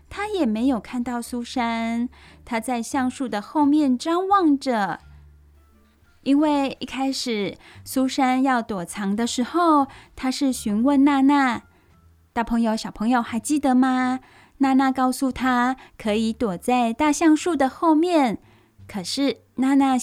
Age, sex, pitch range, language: 10-29, female, 215-295 Hz, Chinese